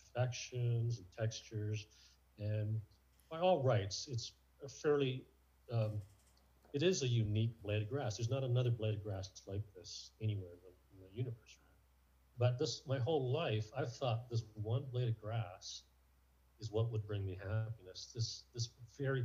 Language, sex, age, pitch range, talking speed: English, male, 40-59, 100-120 Hz, 165 wpm